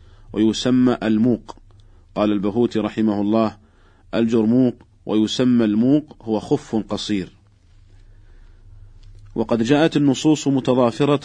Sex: male